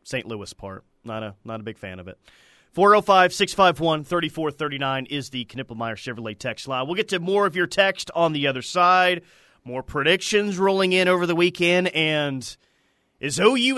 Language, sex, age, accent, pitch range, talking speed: English, male, 30-49, American, 140-200 Hz, 170 wpm